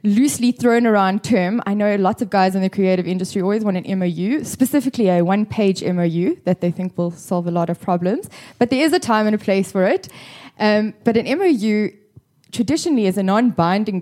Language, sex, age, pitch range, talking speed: English, female, 10-29, 180-215 Hz, 205 wpm